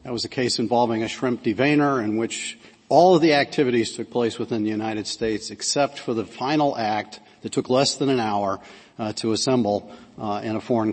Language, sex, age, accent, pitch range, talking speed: English, male, 50-69, American, 110-140 Hz, 210 wpm